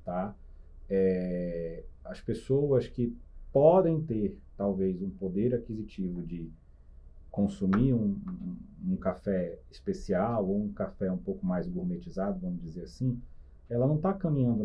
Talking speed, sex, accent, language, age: 130 wpm, male, Brazilian, Portuguese, 30-49